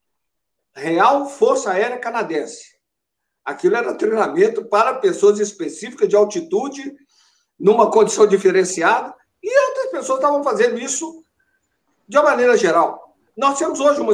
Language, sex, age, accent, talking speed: Portuguese, male, 60-79, Brazilian, 125 wpm